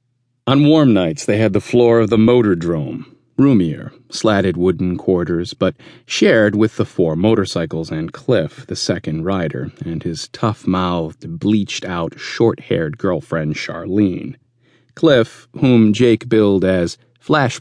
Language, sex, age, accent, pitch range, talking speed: English, male, 40-59, American, 90-125 Hz, 130 wpm